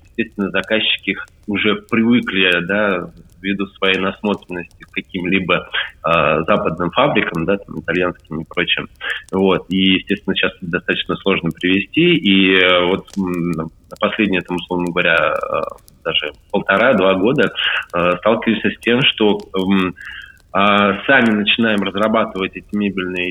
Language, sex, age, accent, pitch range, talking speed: Russian, male, 20-39, native, 90-105 Hz, 120 wpm